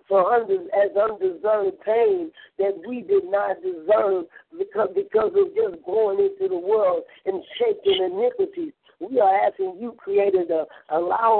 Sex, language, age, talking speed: female, English, 60-79, 135 wpm